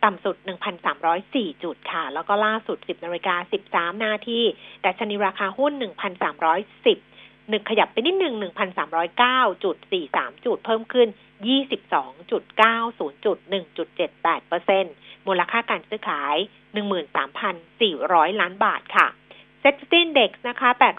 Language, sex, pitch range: Thai, female, 195-255 Hz